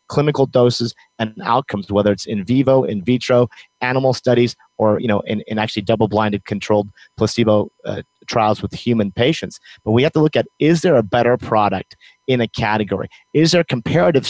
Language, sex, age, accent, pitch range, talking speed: English, male, 30-49, American, 105-125 Hz, 180 wpm